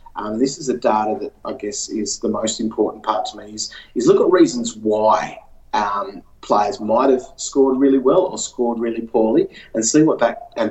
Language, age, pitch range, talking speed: English, 30-49, 110-130 Hz, 205 wpm